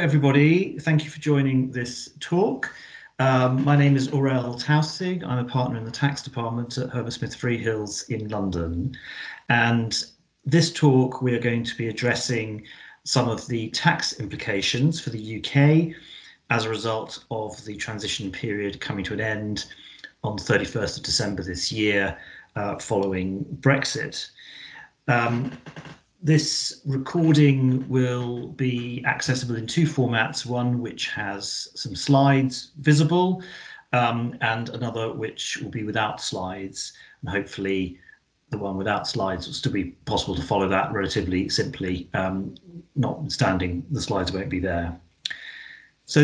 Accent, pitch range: British, 110-140 Hz